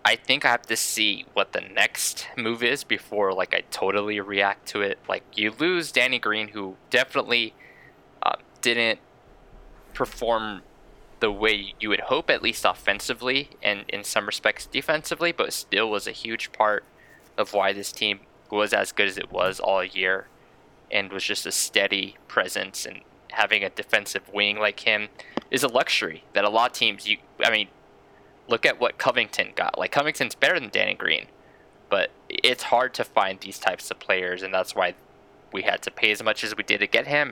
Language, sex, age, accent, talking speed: English, male, 10-29, American, 190 wpm